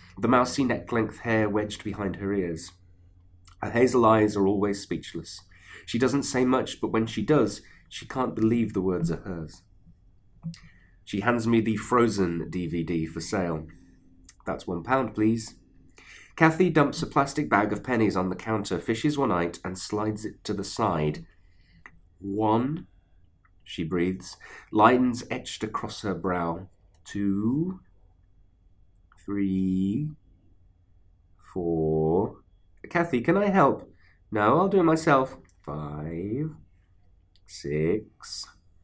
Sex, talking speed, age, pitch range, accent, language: male, 125 wpm, 30-49, 90-110 Hz, British, English